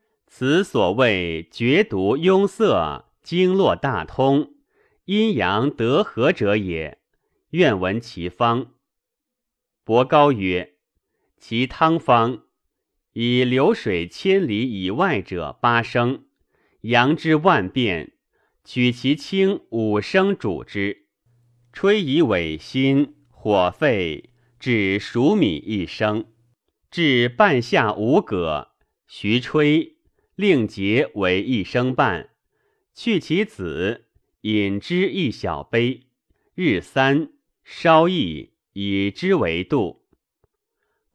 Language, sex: Chinese, male